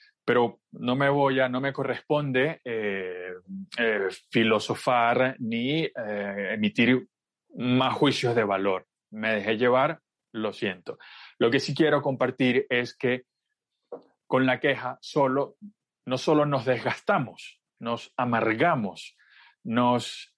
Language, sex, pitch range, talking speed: Spanish, male, 115-140 Hz, 120 wpm